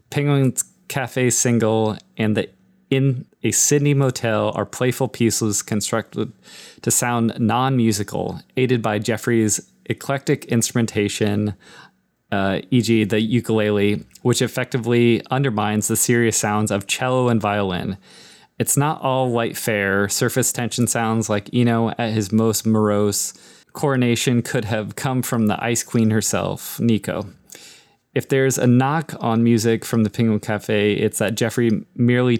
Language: English